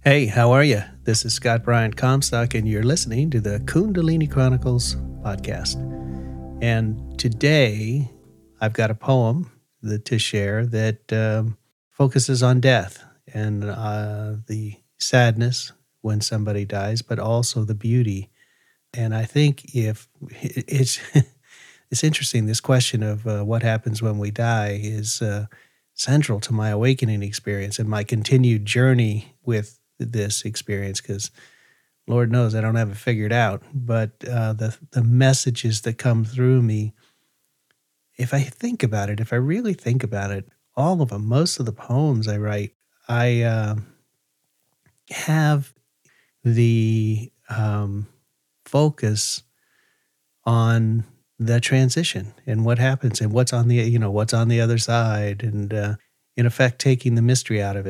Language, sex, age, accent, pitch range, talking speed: English, male, 40-59, American, 105-130 Hz, 145 wpm